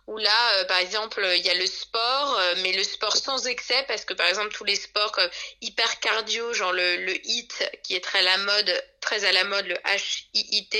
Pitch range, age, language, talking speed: 185-225 Hz, 20-39, French, 240 wpm